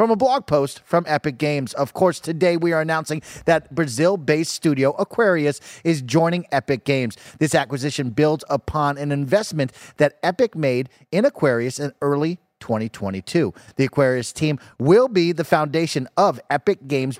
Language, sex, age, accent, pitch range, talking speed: English, male, 30-49, American, 130-170 Hz, 155 wpm